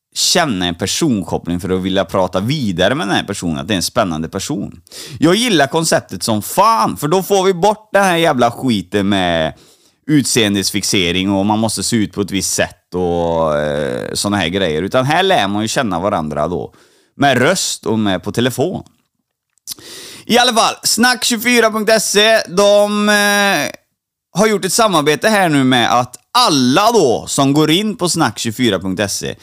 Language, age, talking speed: Swedish, 30-49, 170 wpm